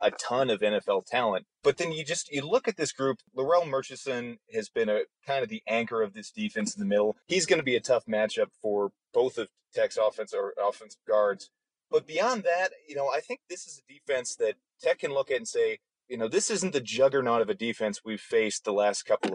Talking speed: 235 wpm